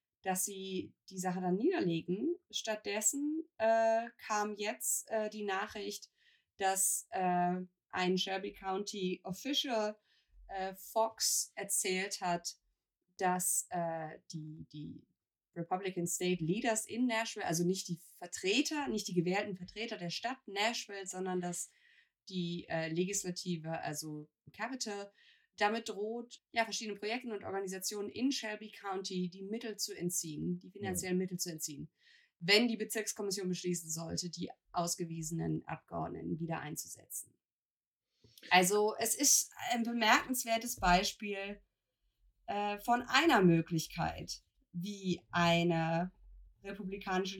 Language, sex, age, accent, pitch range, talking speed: German, female, 20-39, German, 180-220 Hz, 115 wpm